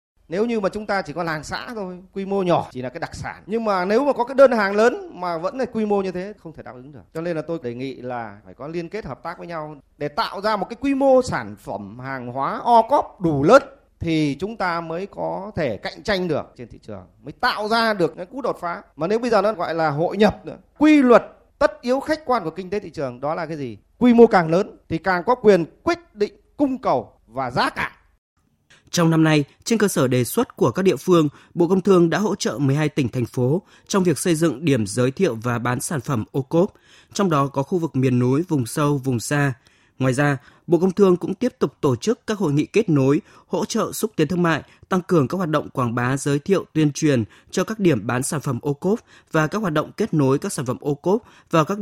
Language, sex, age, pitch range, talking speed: Vietnamese, male, 30-49, 140-200 Hz, 265 wpm